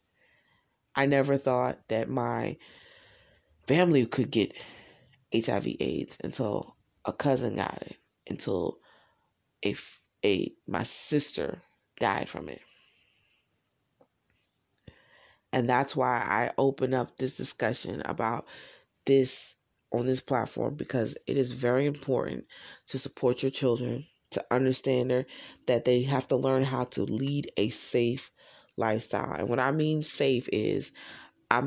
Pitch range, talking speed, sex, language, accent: 125-140 Hz, 125 wpm, female, English, American